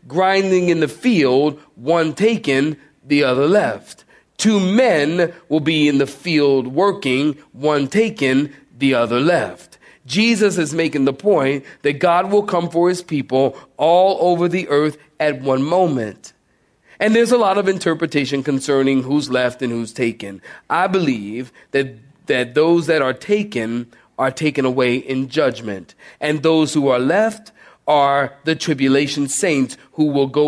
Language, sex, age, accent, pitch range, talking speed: English, male, 40-59, American, 130-165 Hz, 155 wpm